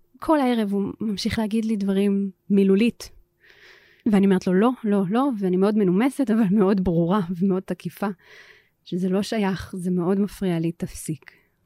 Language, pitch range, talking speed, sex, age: Hebrew, 180-220 Hz, 155 wpm, female, 30-49